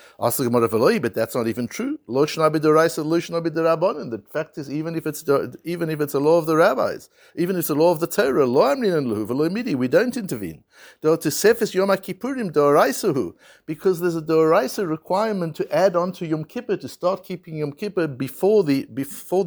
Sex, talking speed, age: male, 150 wpm, 60-79